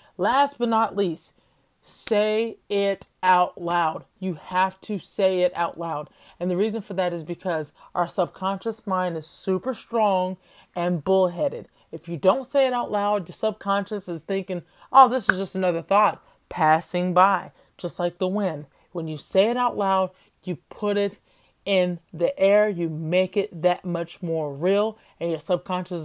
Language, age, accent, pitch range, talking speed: English, 30-49, American, 175-215 Hz, 175 wpm